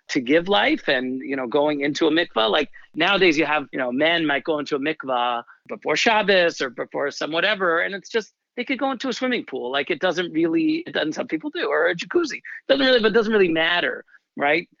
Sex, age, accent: male, 40-59, American